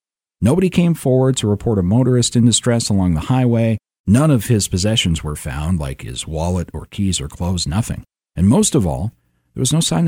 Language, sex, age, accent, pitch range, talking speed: English, male, 50-69, American, 85-140 Hz, 200 wpm